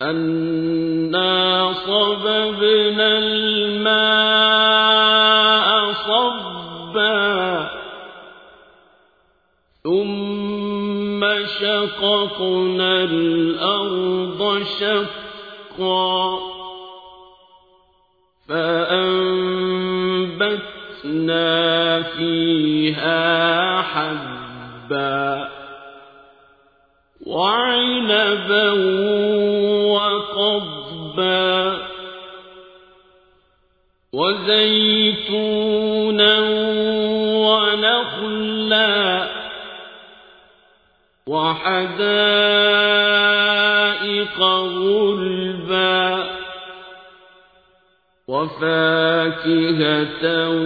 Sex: male